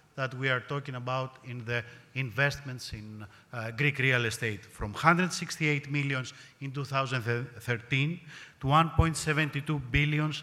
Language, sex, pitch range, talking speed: English, male, 120-155 Hz, 115 wpm